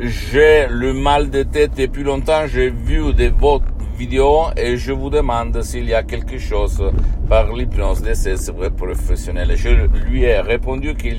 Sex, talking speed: male, 170 wpm